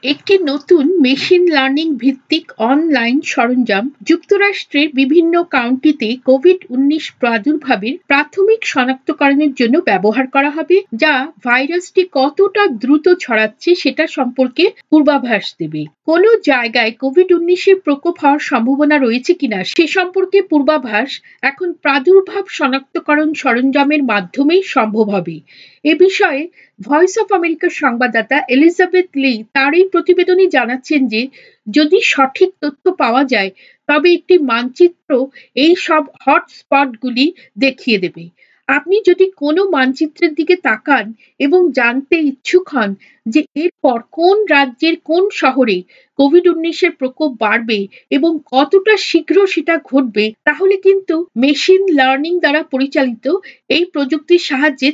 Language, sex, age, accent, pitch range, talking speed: Bengali, female, 50-69, native, 260-345 Hz, 40 wpm